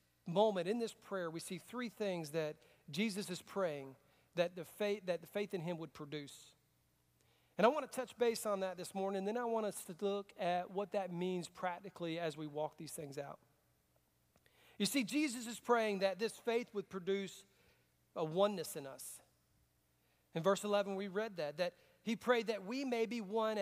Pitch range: 170-225 Hz